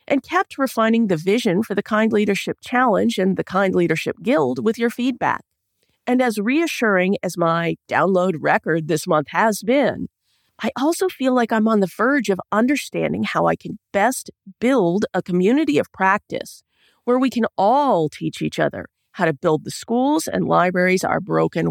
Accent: American